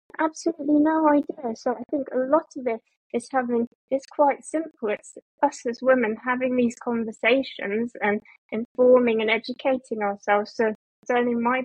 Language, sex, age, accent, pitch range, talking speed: English, female, 20-39, British, 220-255 Hz, 155 wpm